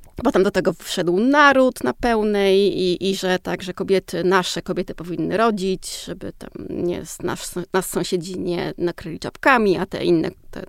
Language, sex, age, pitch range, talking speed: Polish, female, 30-49, 185-255 Hz, 165 wpm